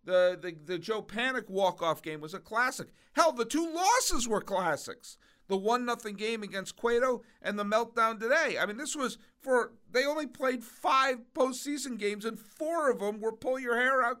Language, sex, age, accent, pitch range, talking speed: English, male, 50-69, American, 185-255 Hz, 175 wpm